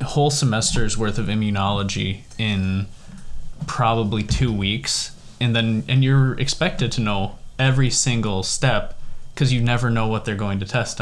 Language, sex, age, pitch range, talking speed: English, male, 20-39, 105-125 Hz, 150 wpm